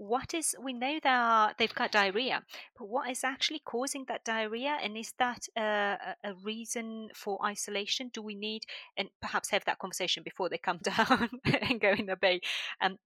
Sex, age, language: female, 30-49, English